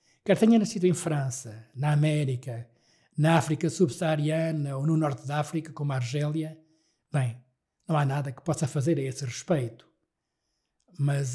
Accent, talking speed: Portuguese, 150 wpm